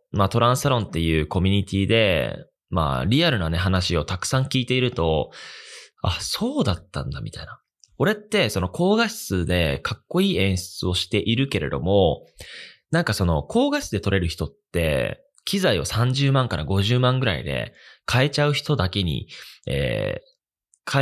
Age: 20-39